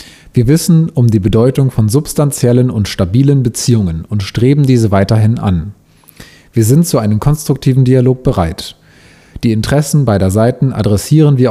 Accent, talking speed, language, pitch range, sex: German, 145 wpm, German, 105-135 Hz, male